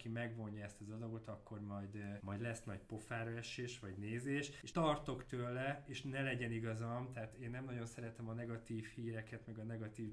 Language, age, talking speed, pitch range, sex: Hungarian, 20-39, 185 wpm, 105-125 Hz, male